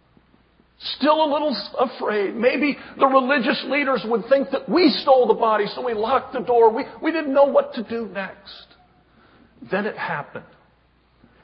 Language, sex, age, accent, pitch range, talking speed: English, male, 50-69, American, 215-280 Hz, 165 wpm